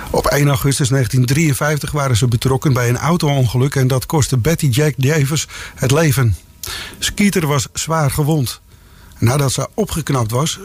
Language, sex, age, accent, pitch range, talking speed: English, male, 50-69, Dutch, 125-160 Hz, 145 wpm